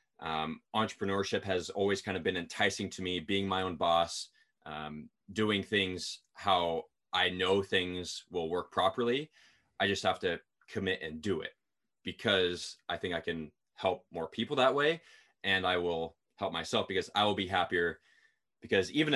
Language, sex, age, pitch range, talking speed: English, male, 20-39, 90-110 Hz, 170 wpm